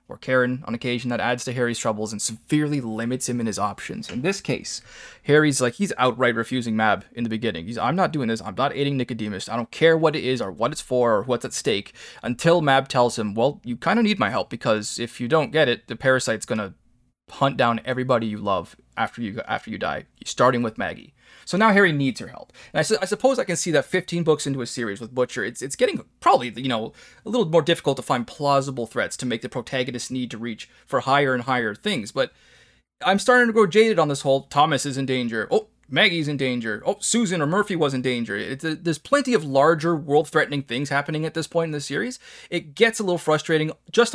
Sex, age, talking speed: male, 20-39, 240 wpm